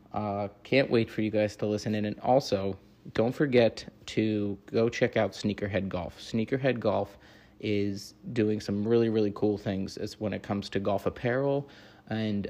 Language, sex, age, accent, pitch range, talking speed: English, male, 20-39, American, 105-115 Hz, 175 wpm